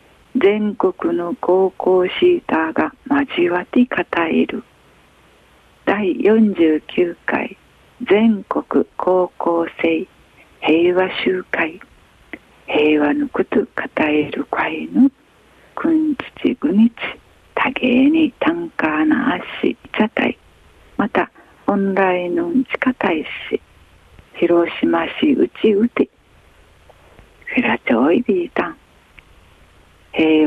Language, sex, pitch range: Japanese, female, 175-275 Hz